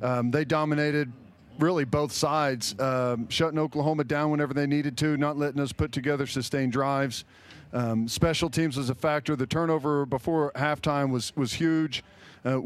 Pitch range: 135-160 Hz